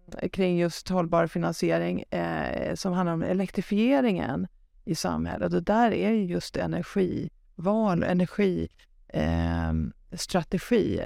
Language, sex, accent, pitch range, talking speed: Swedish, female, native, 165-220 Hz, 105 wpm